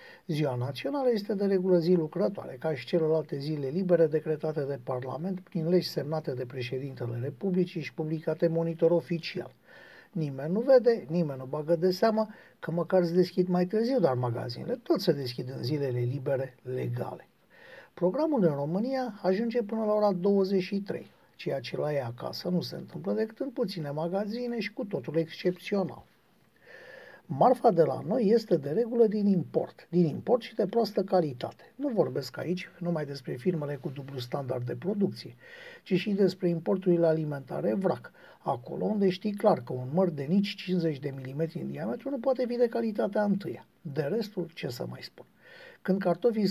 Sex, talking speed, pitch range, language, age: male, 170 wpm, 160-210 Hz, Romanian, 50-69